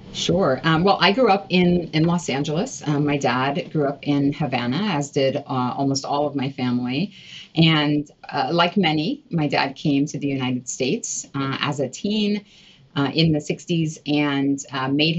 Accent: American